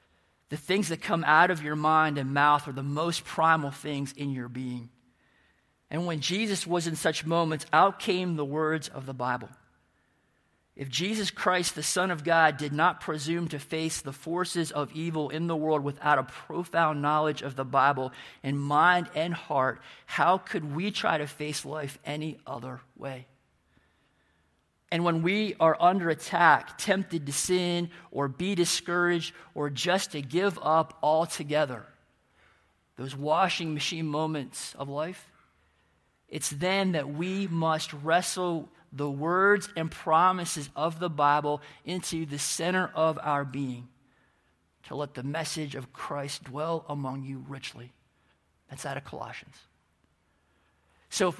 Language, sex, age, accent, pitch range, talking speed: English, male, 40-59, American, 135-175 Hz, 155 wpm